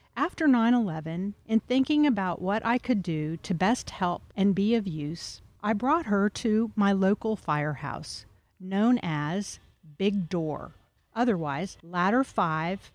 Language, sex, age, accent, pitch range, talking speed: English, female, 50-69, American, 175-235 Hz, 140 wpm